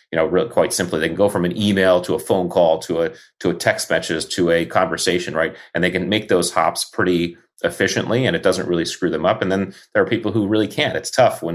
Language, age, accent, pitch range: English, 30-49, American, 85-95 Hz